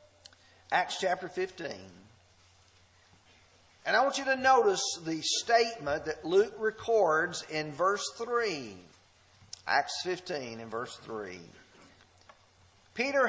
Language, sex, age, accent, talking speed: English, male, 40-59, American, 105 wpm